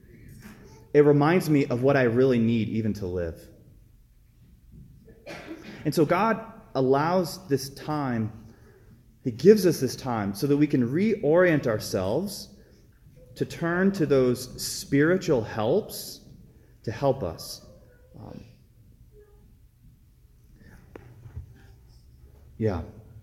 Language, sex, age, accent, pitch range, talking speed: English, male, 30-49, American, 105-140 Hz, 100 wpm